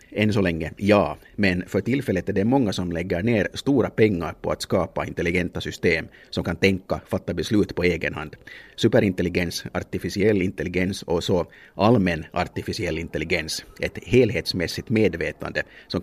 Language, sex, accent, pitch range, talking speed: Swedish, male, Finnish, 85-110 Hz, 155 wpm